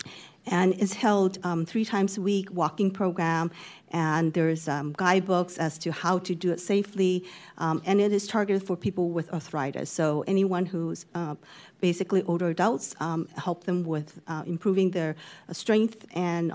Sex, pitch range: female, 170-205 Hz